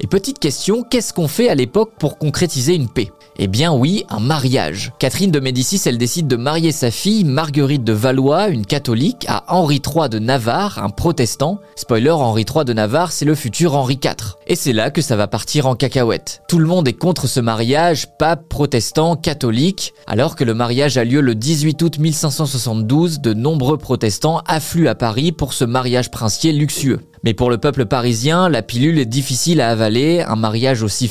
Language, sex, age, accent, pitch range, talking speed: French, male, 20-39, French, 120-155 Hz, 195 wpm